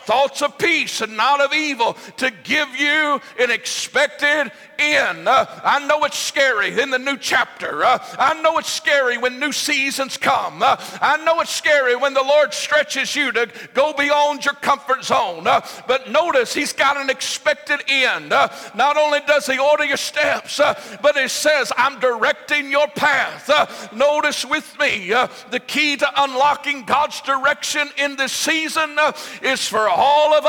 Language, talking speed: English, 175 wpm